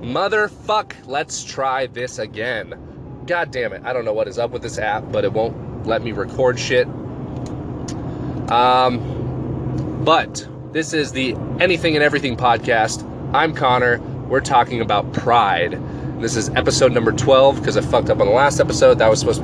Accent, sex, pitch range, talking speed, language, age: American, male, 120-145 Hz, 175 wpm, English, 30-49